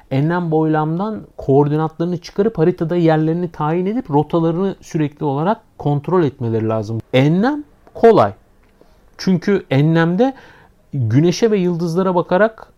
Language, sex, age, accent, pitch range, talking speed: Turkish, male, 50-69, native, 135-190 Hz, 105 wpm